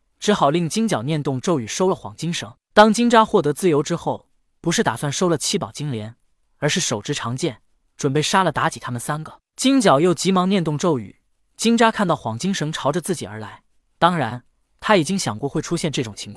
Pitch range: 135-195 Hz